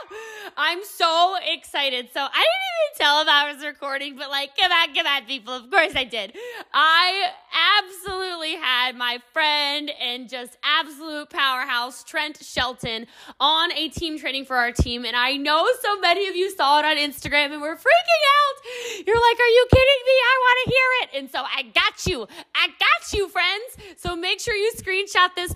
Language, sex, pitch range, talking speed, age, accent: English, female, 265-370 Hz, 195 wpm, 20-39, American